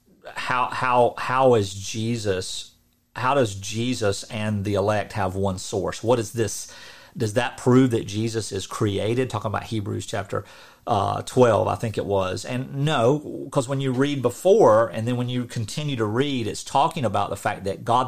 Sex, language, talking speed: male, English, 185 wpm